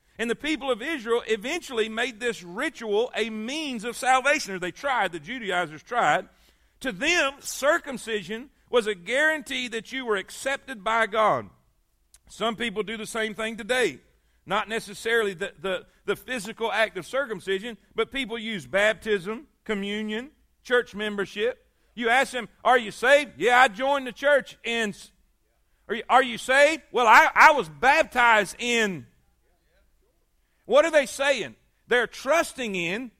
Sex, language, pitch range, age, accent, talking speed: male, English, 215-280 Hz, 50-69, American, 150 wpm